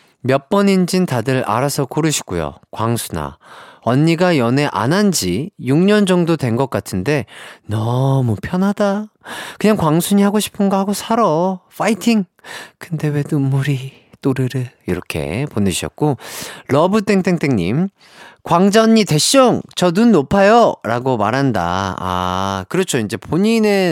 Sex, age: male, 30-49